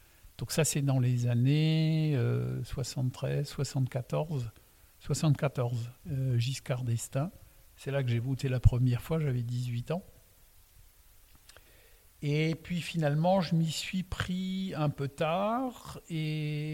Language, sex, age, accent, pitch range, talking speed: French, male, 50-69, French, 120-160 Hz, 125 wpm